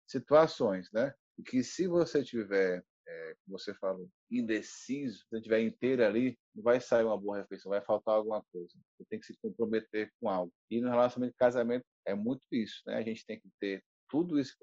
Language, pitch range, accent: Portuguese, 105-130 Hz, Brazilian